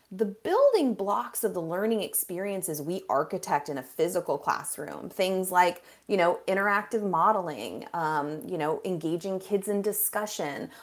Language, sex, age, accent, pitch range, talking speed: English, female, 30-49, American, 165-220 Hz, 145 wpm